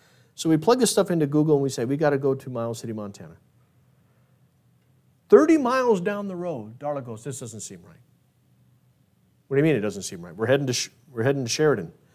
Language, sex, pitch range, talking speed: English, male, 130-215 Hz, 205 wpm